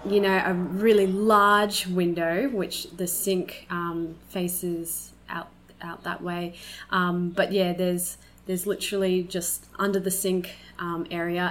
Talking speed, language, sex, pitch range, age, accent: 140 wpm, English, female, 175-210 Hz, 20-39, Australian